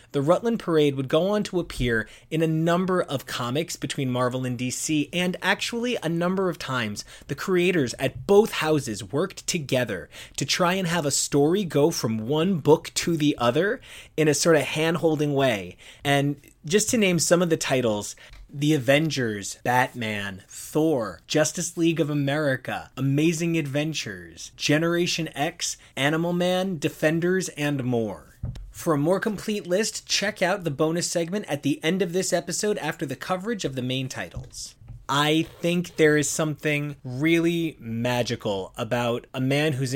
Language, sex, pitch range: English, male, 120-165 Hz